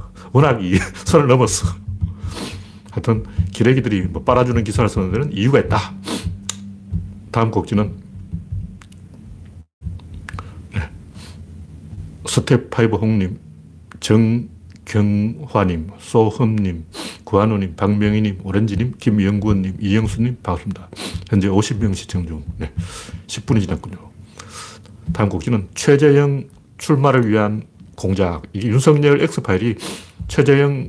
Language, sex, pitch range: Korean, male, 95-120 Hz